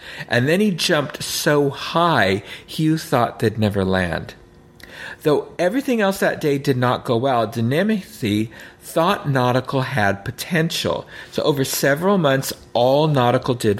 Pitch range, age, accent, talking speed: 115-160 Hz, 50-69, American, 140 wpm